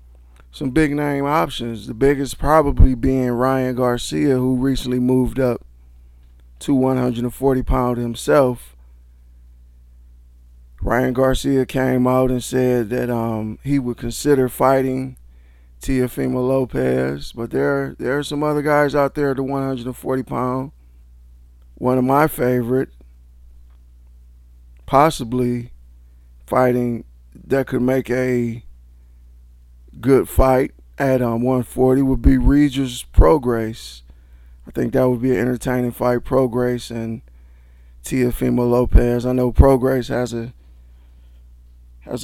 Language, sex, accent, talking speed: English, male, American, 115 wpm